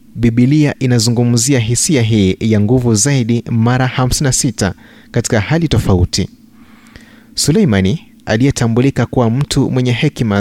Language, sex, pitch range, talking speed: Swahili, male, 110-140 Hz, 105 wpm